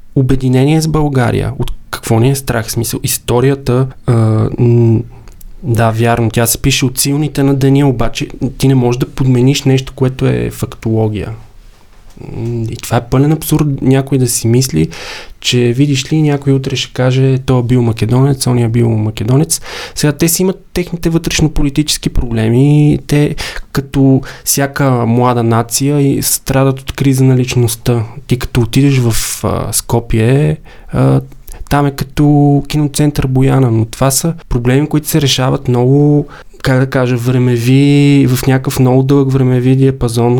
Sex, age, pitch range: male, 20-39, 120-140 Hz